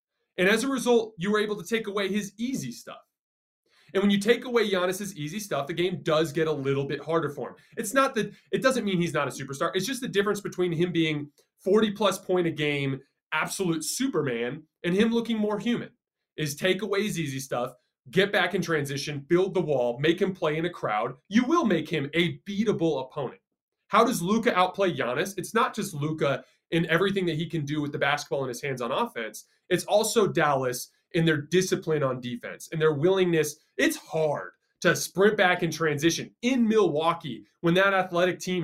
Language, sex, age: English, male, 20-39